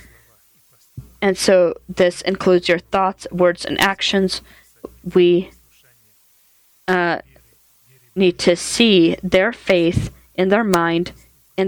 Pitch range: 135-185 Hz